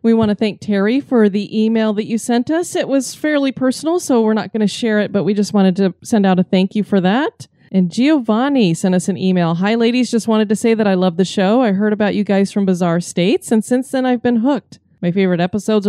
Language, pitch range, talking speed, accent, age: English, 180-230 Hz, 260 wpm, American, 30-49